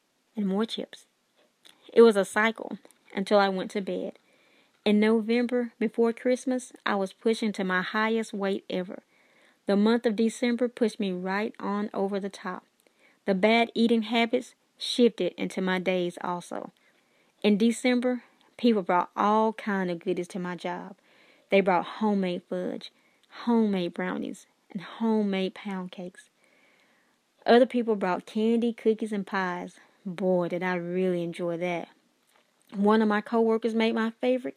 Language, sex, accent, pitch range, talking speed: English, female, American, 195-245 Hz, 150 wpm